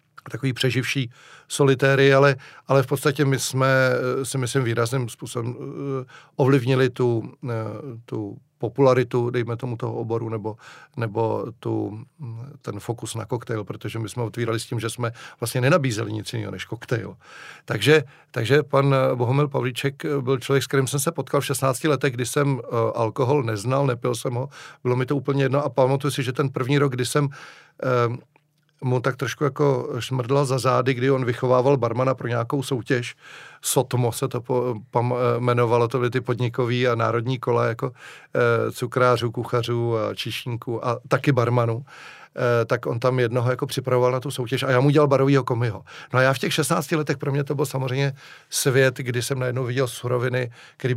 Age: 40-59